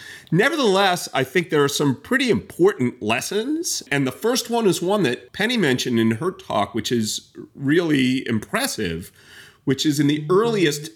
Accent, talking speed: American, 165 wpm